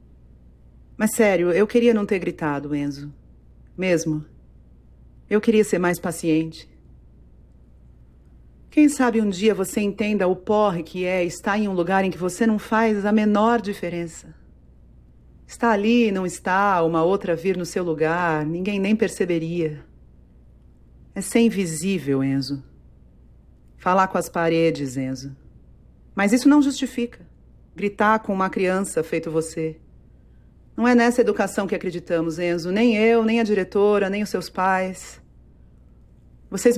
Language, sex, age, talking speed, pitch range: Portuguese, female, 40-59, 140 wpm, 150-225 Hz